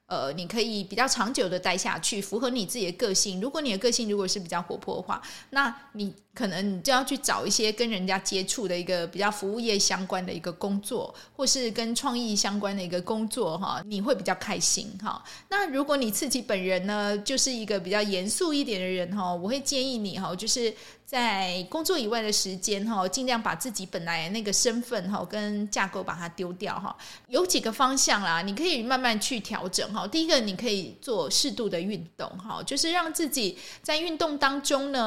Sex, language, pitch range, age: female, Chinese, 195-265 Hz, 20-39